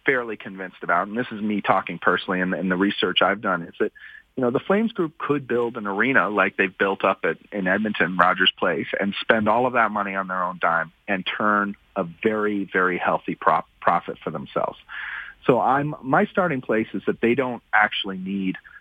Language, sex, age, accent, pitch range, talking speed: English, male, 40-59, American, 100-140 Hz, 205 wpm